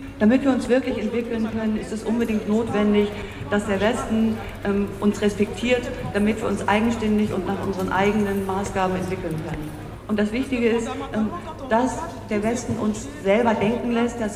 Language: German